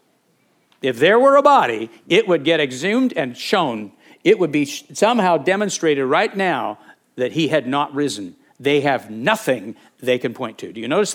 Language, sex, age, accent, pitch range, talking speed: English, male, 60-79, American, 145-200 Hz, 180 wpm